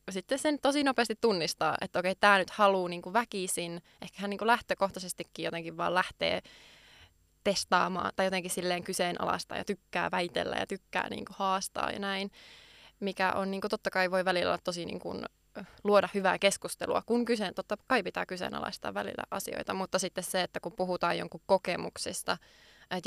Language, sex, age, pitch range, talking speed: Finnish, female, 20-39, 180-205 Hz, 155 wpm